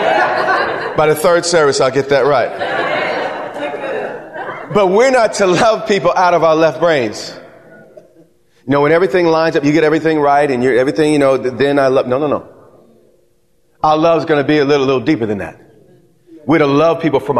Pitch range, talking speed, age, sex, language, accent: 120-160 Hz, 195 wpm, 30-49, male, English, American